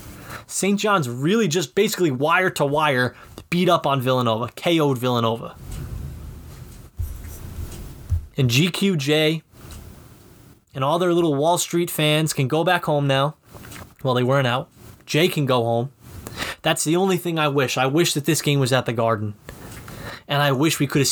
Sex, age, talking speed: male, 20-39, 160 wpm